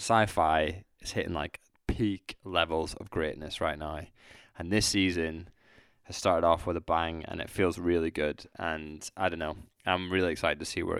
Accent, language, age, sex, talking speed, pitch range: British, English, 20-39, male, 185 wpm, 85-100 Hz